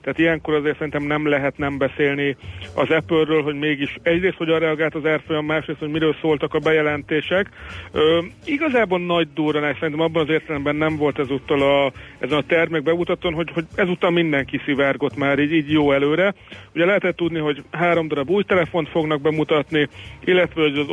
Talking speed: 180 wpm